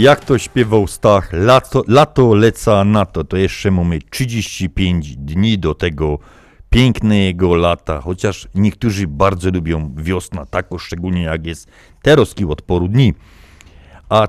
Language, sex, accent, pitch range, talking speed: Polish, male, native, 95-125 Hz, 130 wpm